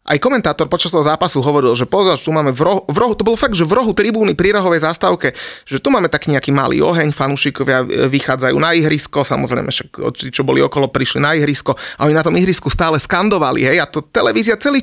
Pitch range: 130-160 Hz